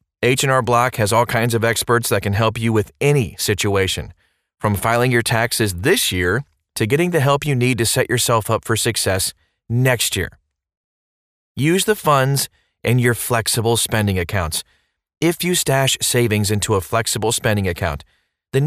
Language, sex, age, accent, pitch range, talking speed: English, male, 30-49, American, 100-135 Hz, 165 wpm